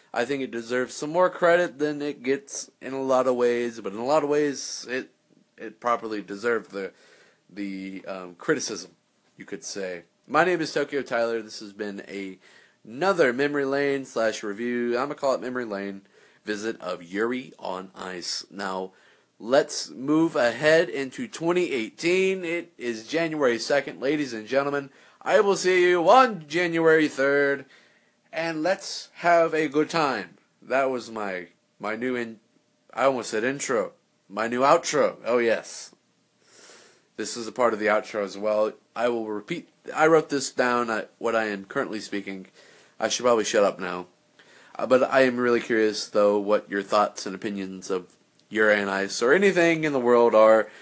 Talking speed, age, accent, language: 175 wpm, 30-49, American, English